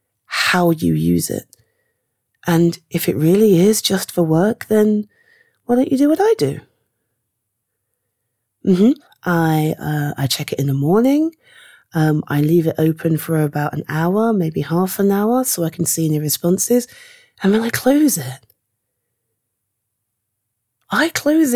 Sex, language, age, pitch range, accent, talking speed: female, English, 30-49, 145-205 Hz, British, 155 wpm